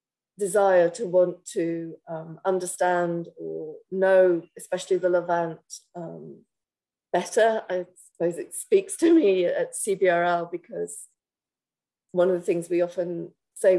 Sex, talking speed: female, 125 wpm